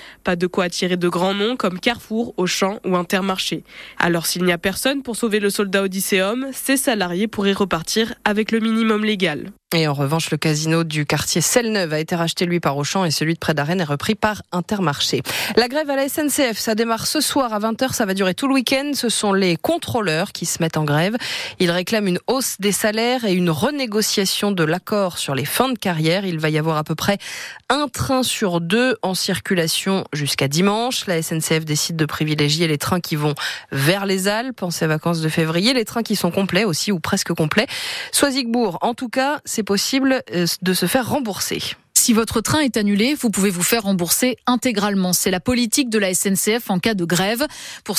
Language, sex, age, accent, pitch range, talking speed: French, female, 20-39, French, 175-235 Hz, 210 wpm